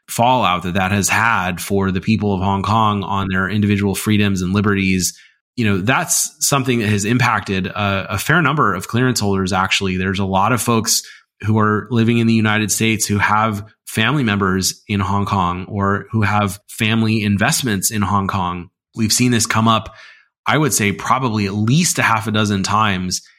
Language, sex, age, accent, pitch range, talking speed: English, male, 20-39, American, 100-115 Hz, 190 wpm